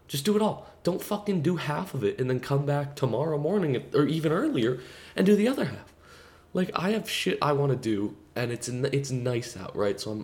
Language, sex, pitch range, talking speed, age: English, male, 85-140 Hz, 240 wpm, 20-39